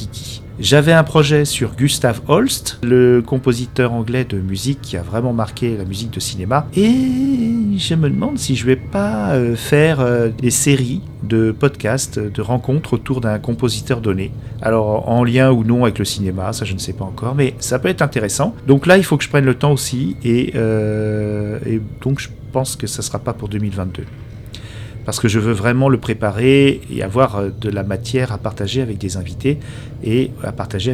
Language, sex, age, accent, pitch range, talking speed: French, male, 40-59, French, 110-135 Hz, 190 wpm